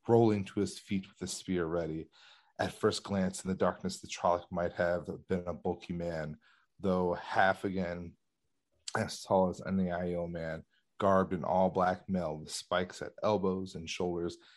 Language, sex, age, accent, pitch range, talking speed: English, male, 30-49, American, 85-95 Hz, 175 wpm